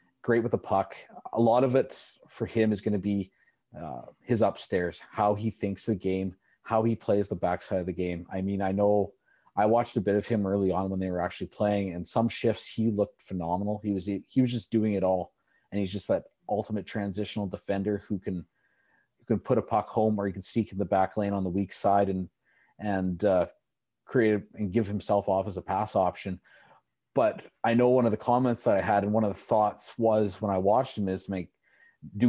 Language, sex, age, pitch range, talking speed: English, male, 30-49, 95-110 Hz, 230 wpm